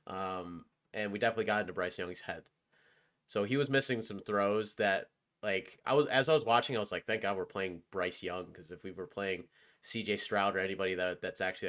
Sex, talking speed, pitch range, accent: male, 225 wpm, 95-115 Hz, American